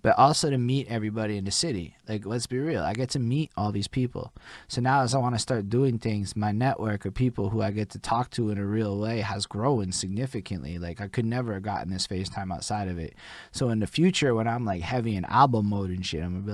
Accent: American